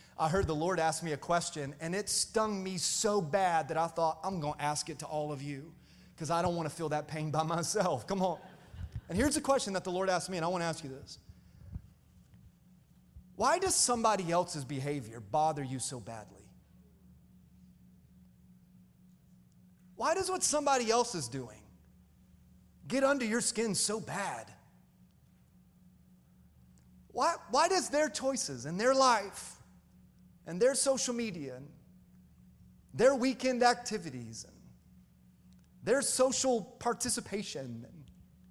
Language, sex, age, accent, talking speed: English, male, 30-49, American, 150 wpm